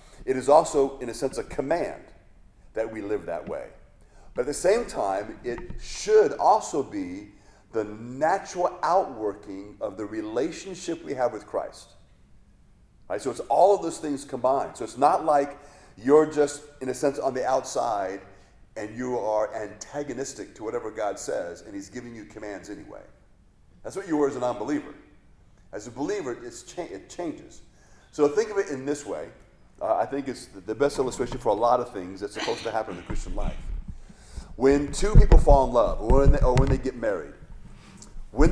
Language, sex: English, male